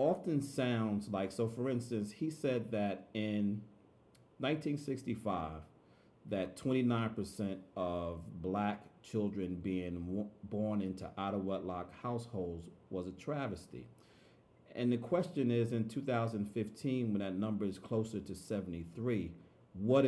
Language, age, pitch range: English, 40-59, 95-115 Hz